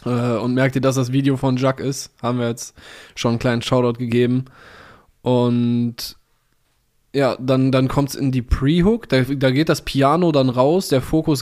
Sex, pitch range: male, 125-140 Hz